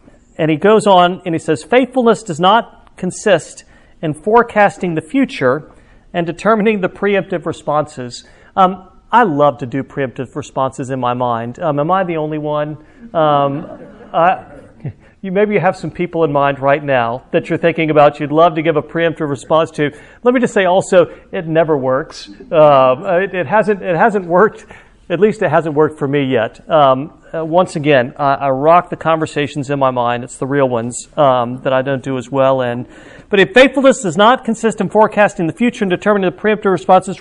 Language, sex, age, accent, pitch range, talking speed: English, male, 50-69, American, 145-200 Hz, 195 wpm